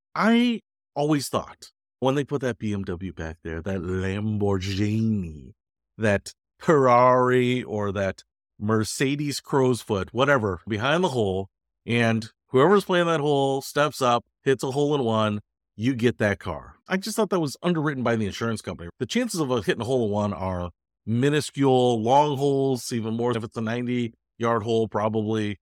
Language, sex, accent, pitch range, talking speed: English, male, American, 100-135 Hz, 155 wpm